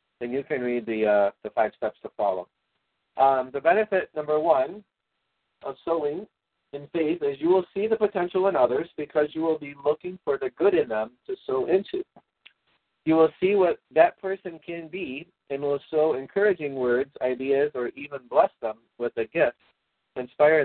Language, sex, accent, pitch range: English, male, American, 125-185 Hz